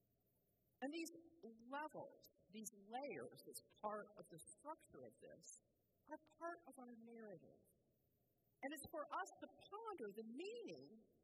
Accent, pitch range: American, 205-295 Hz